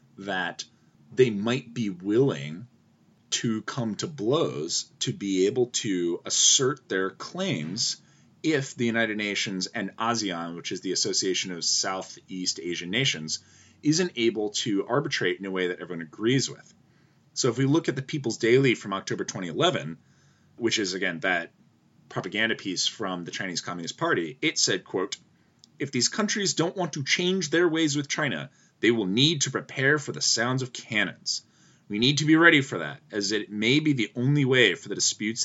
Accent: American